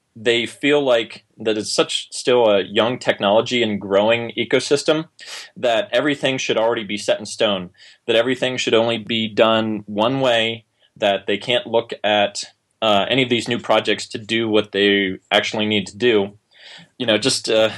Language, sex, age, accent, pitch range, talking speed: English, male, 20-39, American, 105-120 Hz, 170 wpm